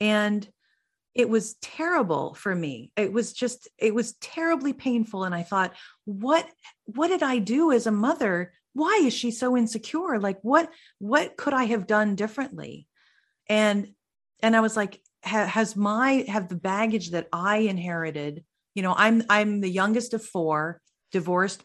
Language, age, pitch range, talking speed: English, 40-59, 175-225 Hz, 165 wpm